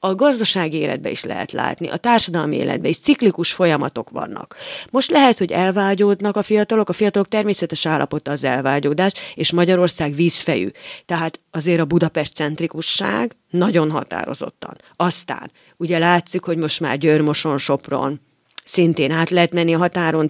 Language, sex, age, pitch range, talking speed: Hungarian, female, 40-59, 160-205 Hz, 140 wpm